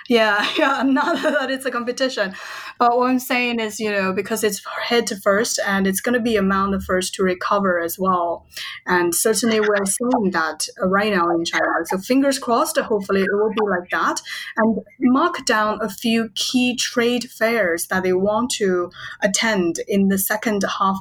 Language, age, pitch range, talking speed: English, 20-39, 185-220 Hz, 185 wpm